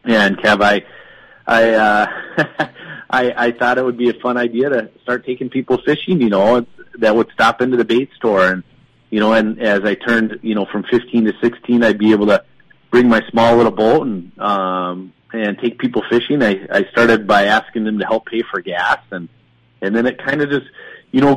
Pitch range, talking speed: 105-120 Hz, 215 wpm